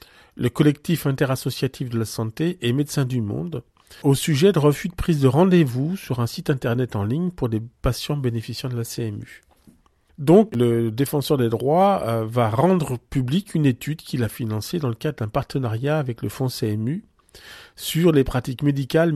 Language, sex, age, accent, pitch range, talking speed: French, male, 40-59, French, 115-150 Hz, 180 wpm